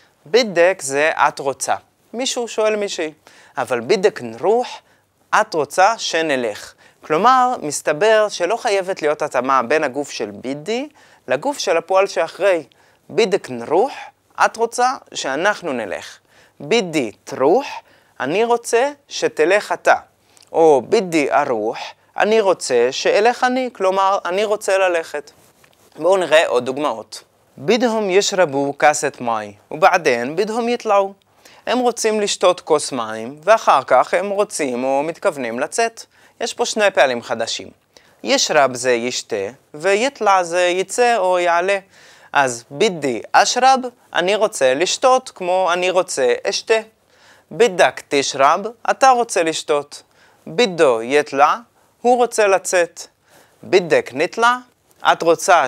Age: 20-39